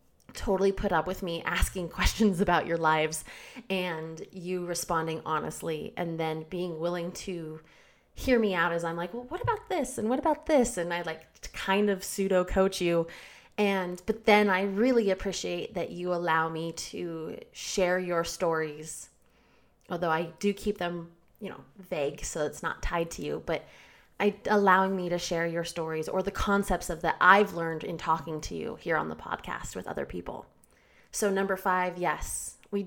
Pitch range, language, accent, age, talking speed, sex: 165-215 Hz, English, American, 20-39, 185 wpm, female